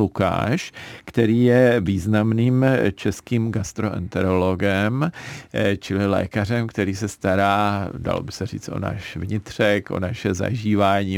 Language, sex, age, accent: Czech, male, 40-59, native